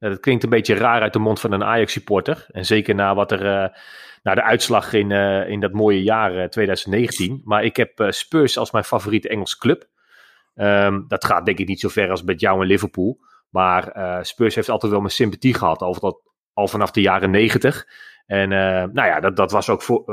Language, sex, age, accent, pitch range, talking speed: Dutch, male, 30-49, Dutch, 95-115 Hz, 195 wpm